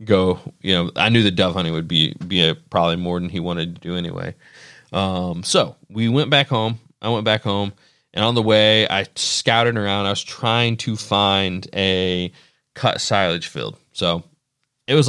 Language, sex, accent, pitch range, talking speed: English, male, American, 95-115 Hz, 195 wpm